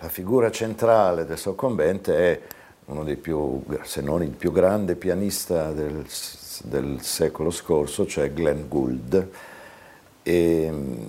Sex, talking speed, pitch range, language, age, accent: male, 130 wpm, 75-110 Hz, Italian, 60-79, native